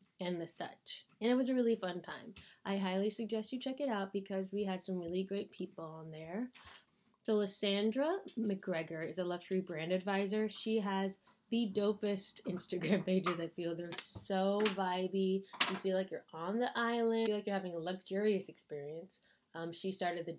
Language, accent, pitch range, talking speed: English, American, 175-215 Hz, 190 wpm